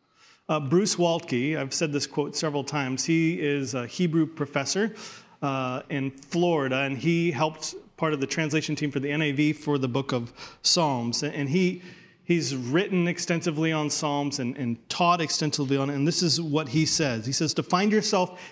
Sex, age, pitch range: male, 40-59, 145-180 Hz